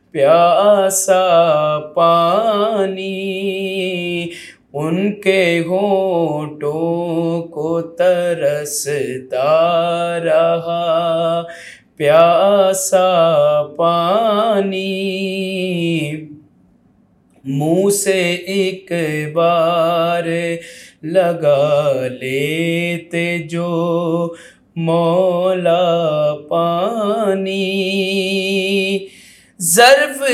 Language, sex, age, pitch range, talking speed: Urdu, male, 30-49, 170-255 Hz, 40 wpm